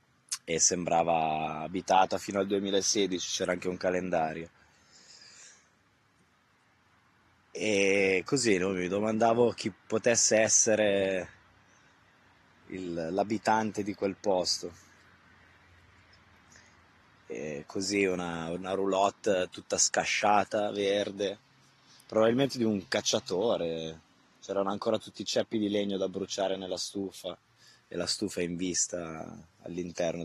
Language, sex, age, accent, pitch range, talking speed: Italian, male, 20-39, native, 90-110 Hz, 95 wpm